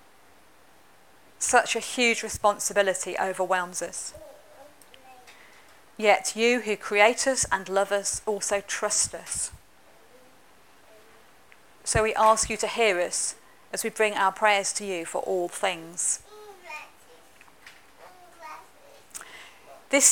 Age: 40-59